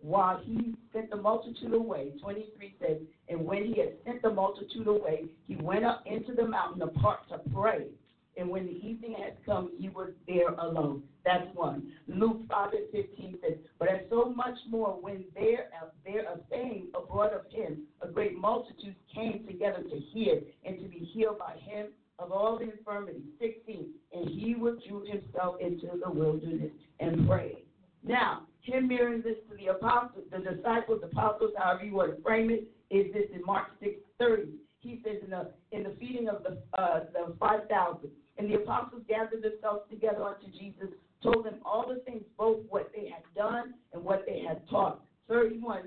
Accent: American